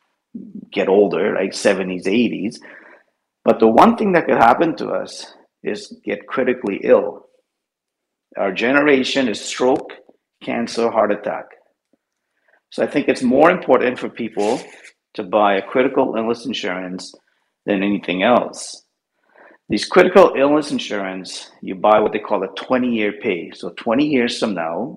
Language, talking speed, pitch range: English, 140 wpm, 105-145 Hz